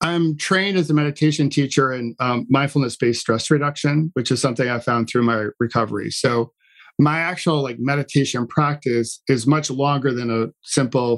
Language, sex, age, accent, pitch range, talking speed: English, male, 40-59, American, 120-150 Hz, 165 wpm